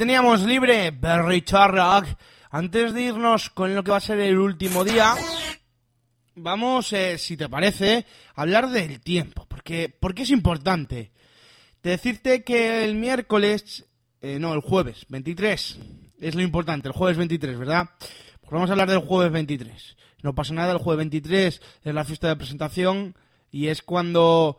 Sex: male